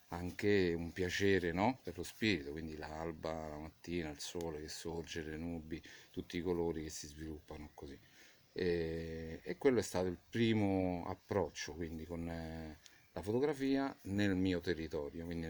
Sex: male